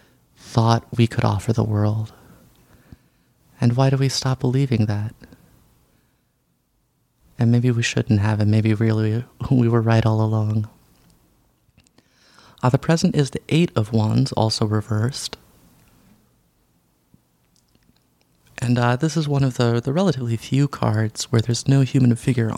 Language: English